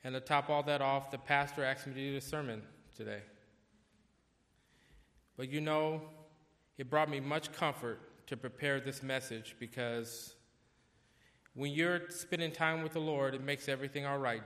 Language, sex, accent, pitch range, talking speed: English, male, American, 115-145 Hz, 165 wpm